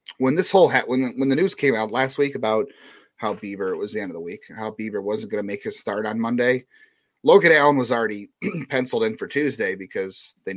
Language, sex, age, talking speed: English, male, 30-49, 240 wpm